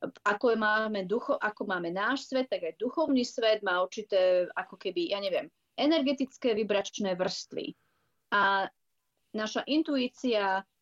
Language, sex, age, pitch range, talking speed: Slovak, female, 30-49, 195-250 Hz, 130 wpm